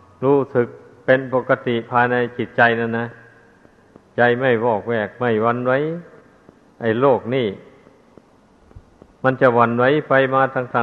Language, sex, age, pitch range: Thai, male, 60-79, 115-135 Hz